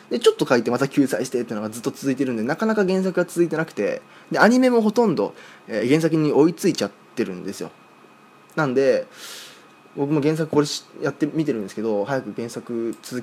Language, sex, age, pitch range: Japanese, male, 20-39, 110-185 Hz